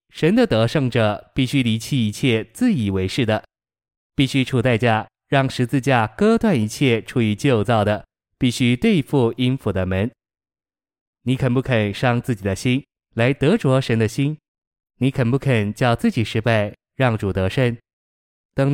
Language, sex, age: Chinese, male, 20-39